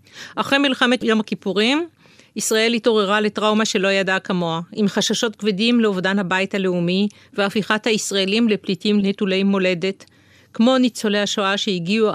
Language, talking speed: Hebrew, 125 wpm